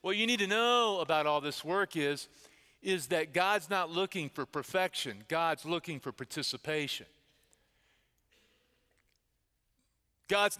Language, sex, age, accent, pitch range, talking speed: English, male, 40-59, American, 160-210 Hz, 125 wpm